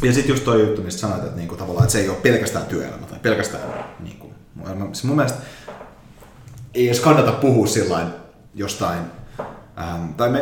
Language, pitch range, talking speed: Finnish, 95-125 Hz, 155 wpm